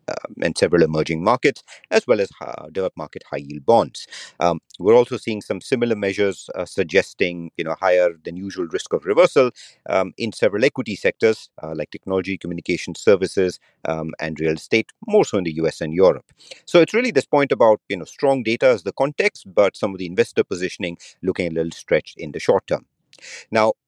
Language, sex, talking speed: English, male, 195 wpm